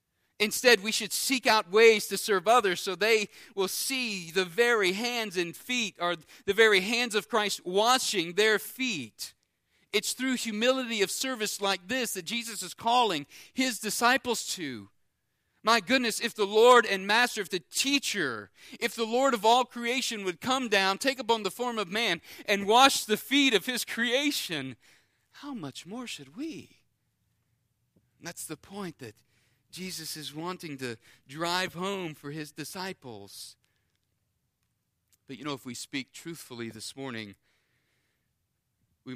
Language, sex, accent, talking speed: English, male, American, 155 wpm